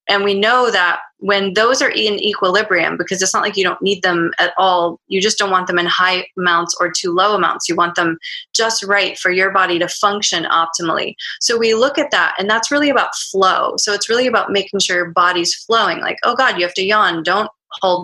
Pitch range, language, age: 175-205 Hz, English, 20-39